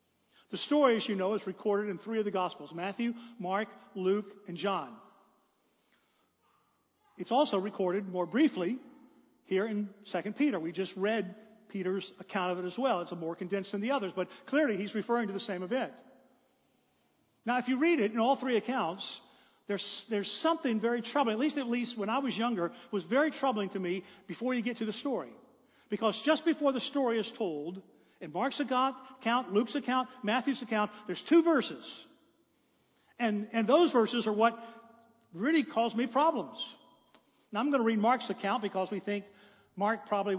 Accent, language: American, English